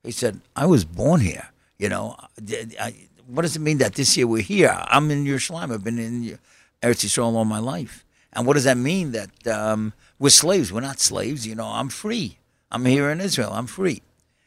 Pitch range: 110-160 Hz